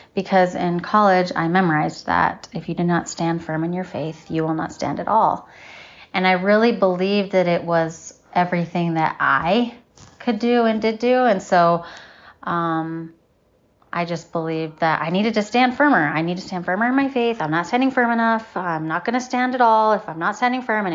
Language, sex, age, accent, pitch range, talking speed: English, female, 30-49, American, 170-205 Hz, 210 wpm